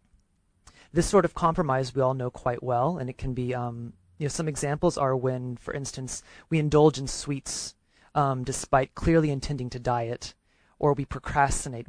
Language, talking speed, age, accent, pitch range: English, 175 wpm, 30-49, American, 115-145 Hz